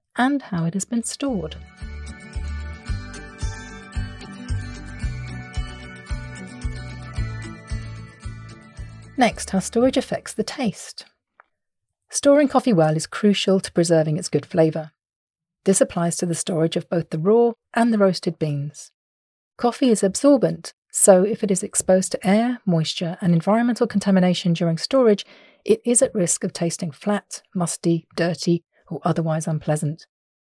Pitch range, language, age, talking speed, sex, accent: 160-215 Hz, English, 40-59, 125 wpm, female, British